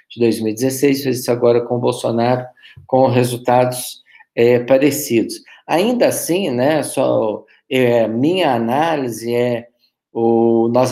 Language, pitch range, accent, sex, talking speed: Portuguese, 105-125 Hz, Brazilian, male, 115 wpm